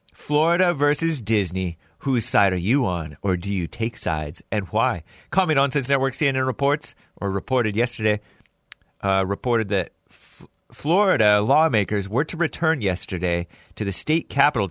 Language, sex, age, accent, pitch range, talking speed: English, male, 40-59, American, 100-135 Hz, 150 wpm